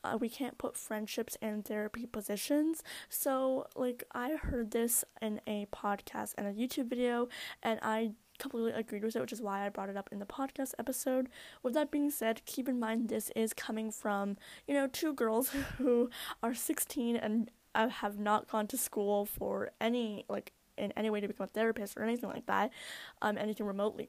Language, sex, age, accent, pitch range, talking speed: English, female, 10-29, American, 210-255 Hz, 195 wpm